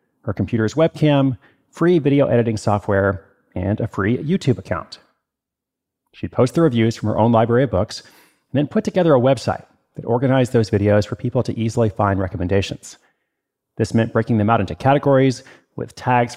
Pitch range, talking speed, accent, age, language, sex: 110-135 Hz, 170 wpm, American, 30-49, English, male